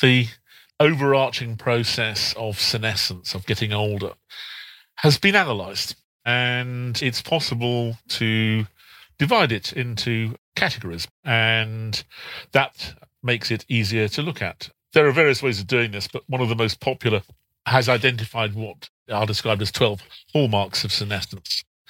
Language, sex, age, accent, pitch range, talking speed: English, male, 40-59, British, 105-125 Hz, 135 wpm